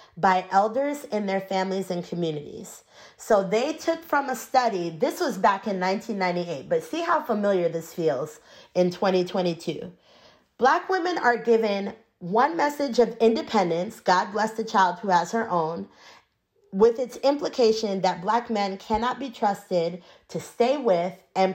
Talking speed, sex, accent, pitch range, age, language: 155 wpm, female, American, 190-245 Hz, 30-49, English